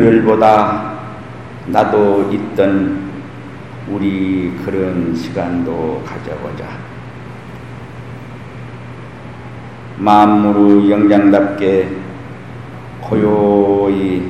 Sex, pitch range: male, 95-110 Hz